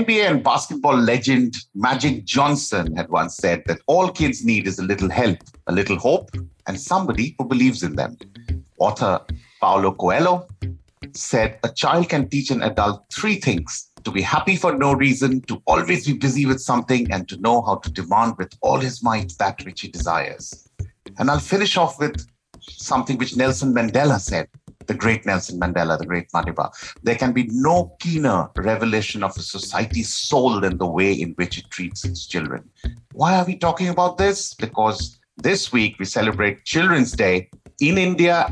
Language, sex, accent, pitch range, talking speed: English, male, Indian, 100-145 Hz, 180 wpm